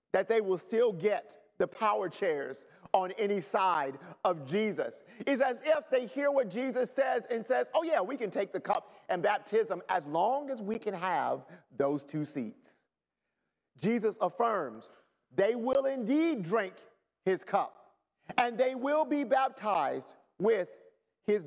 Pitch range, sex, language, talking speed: 185-275 Hz, male, English, 155 wpm